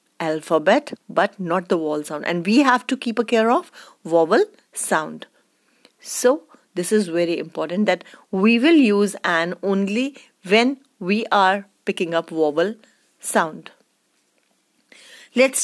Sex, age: female, 30-49